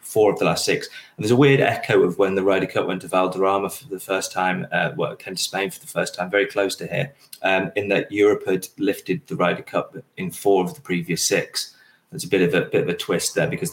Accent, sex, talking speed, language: British, male, 270 wpm, English